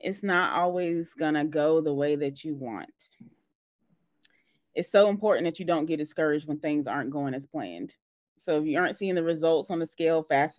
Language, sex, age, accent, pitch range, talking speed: English, female, 30-49, American, 155-210 Hz, 205 wpm